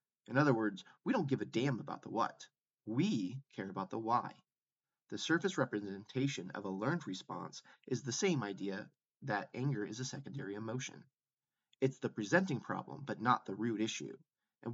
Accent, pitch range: American, 105-135 Hz